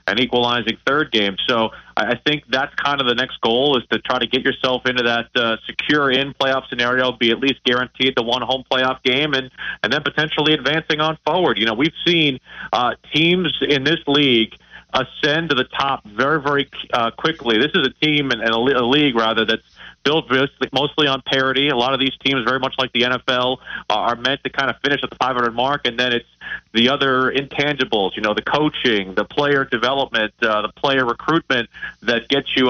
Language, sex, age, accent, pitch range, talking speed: English, male, 30-49, American, 115-140 Hz, 205 wpm